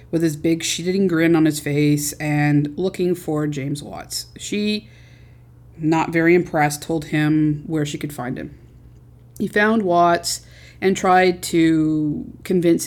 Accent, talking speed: American, 145 wpm